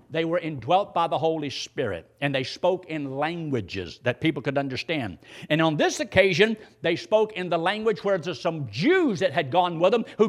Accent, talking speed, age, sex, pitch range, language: American, 205 wpm, 60-79, male, 135-200 Hz, English